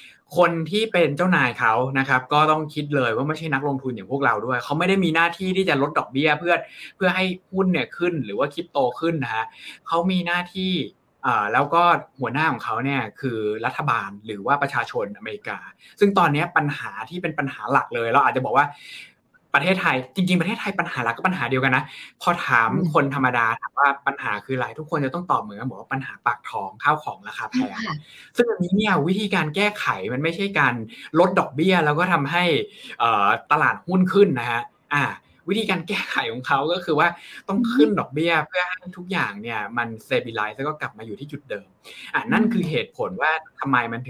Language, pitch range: Thai, 130-180 Hz